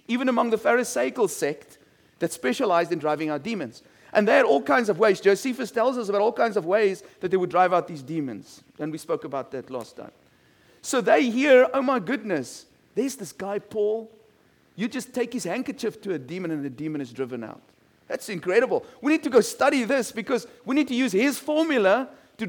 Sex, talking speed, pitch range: male, 215 wpm, 180-260 Hz